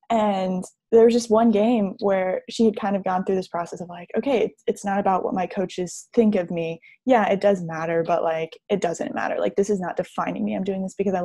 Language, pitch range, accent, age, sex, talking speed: English, 180-220 Hz, American, 10-29, female, 255 wpm